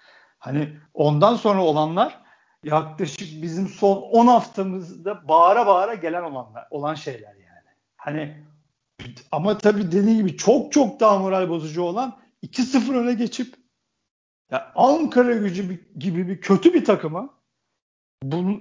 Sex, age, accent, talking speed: male, 50-69, native, 130 wpm